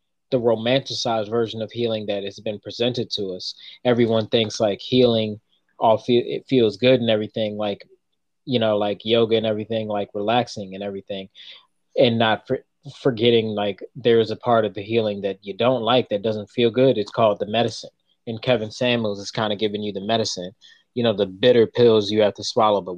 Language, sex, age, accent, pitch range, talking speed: English, male, 20-39, American, 105-120 Hz, 195 wpm